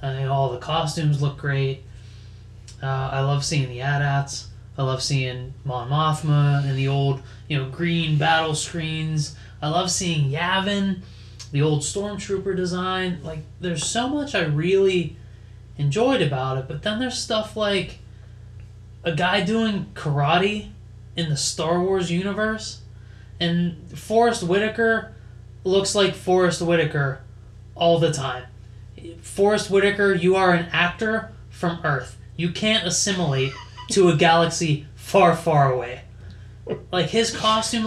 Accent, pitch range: American, 125-175 Hz